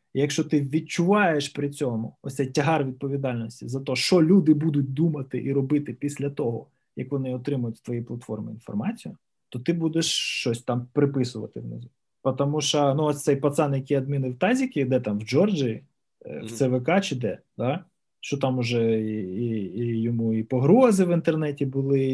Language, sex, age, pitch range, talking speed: Ukrainian, male, 20-39, 125-165 Hz, 175 wpm